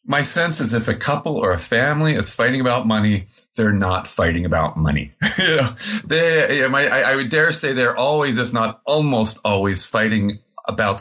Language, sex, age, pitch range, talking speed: English, male, 40-59, 110-165 Hz, 165 wpm